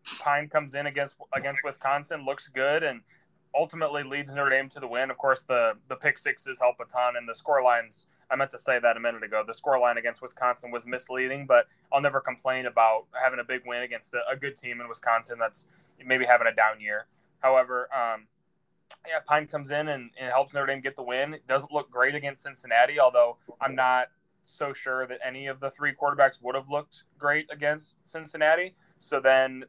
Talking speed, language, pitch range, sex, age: 210 wpm, English, 125-145 Hz, male, 20-39